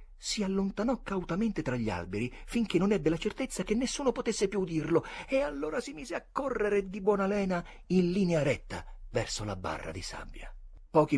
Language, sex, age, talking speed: Italian, male, 40-59, 185 wpm